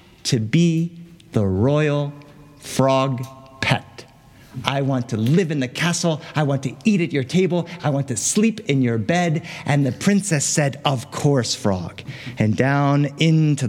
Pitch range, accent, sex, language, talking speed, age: 120-160 Hz, American, male, English, 160 wpm, 50-69